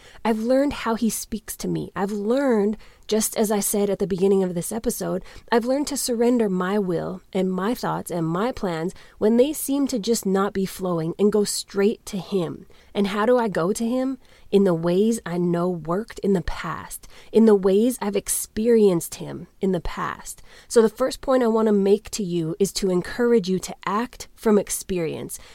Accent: American